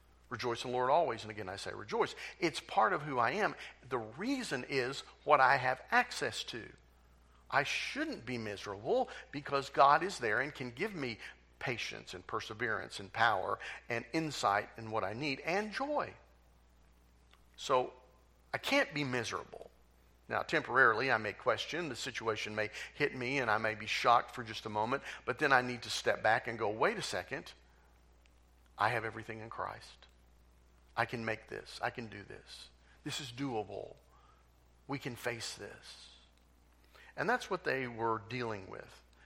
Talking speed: 170 wpm